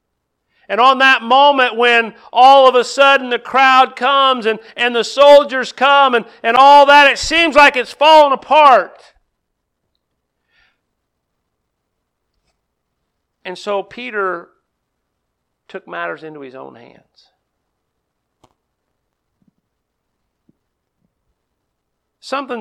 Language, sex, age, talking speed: English, male, 50-69, 100 wpm